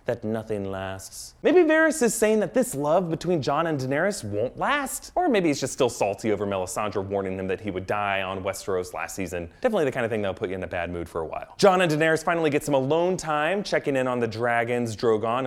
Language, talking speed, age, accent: English, 245 wpm, 30-49, American